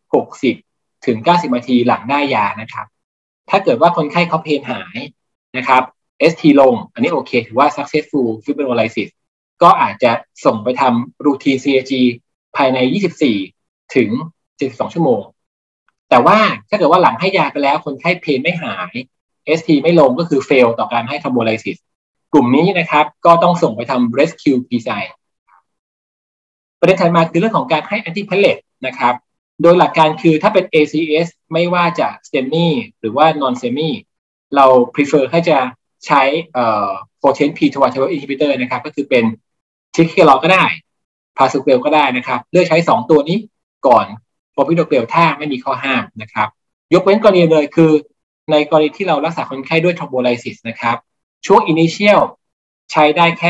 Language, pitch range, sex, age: Thai, 125-165 Hz, male, 20-39